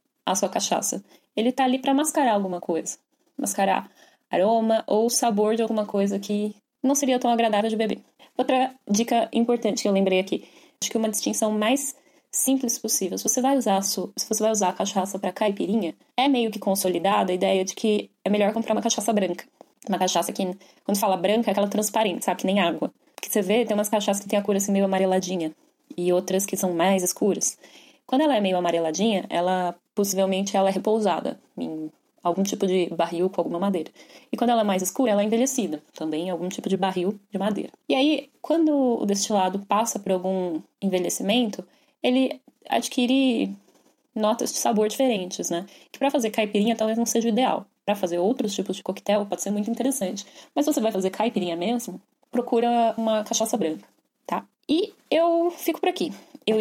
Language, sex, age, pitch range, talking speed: Portuguese, female, 10-29, 195-245 Hz, 195 wpm